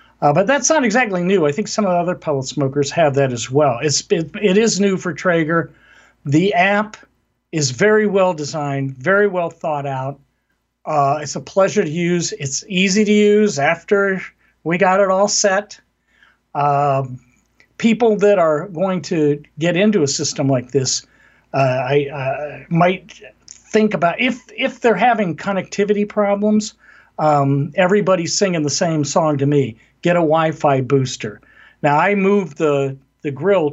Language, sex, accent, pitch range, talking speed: English, male, American, 140-185 Hz, 165 wpm